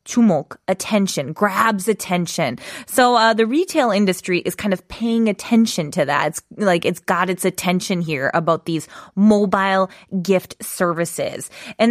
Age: 20-39